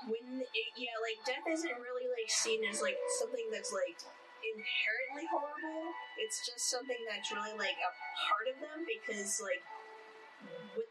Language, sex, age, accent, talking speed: English, female, 20-39, American, 155 wpm